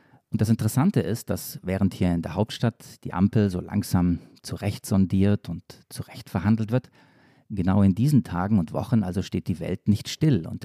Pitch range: 95-115 Hz